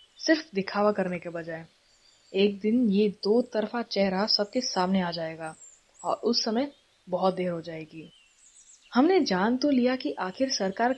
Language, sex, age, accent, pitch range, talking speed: Hindi, female, 20-39, native, 190-250 Hz, 160 wpm